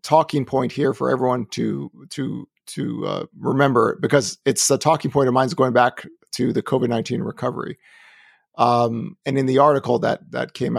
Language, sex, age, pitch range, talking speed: English, male, 50-69, 130-160 Hz, 185 wpm